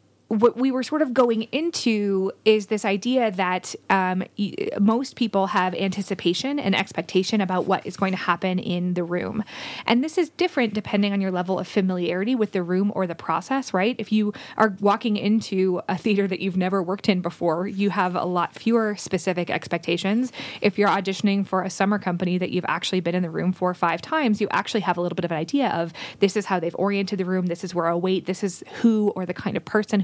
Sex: female